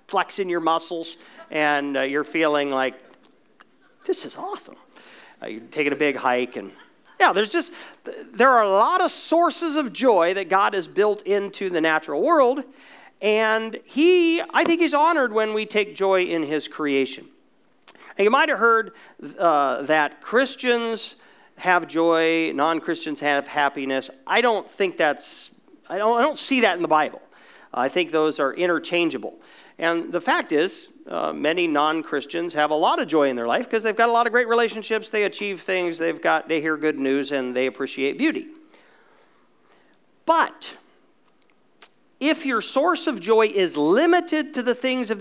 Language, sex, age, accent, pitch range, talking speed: English, male, 40-59, American, 150-245 Hz, 175 wpm